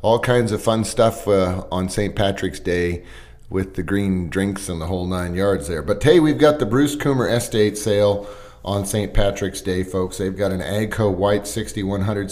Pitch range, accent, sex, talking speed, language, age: 95-110 Hz, American, male, 195 wpm, English, 40-59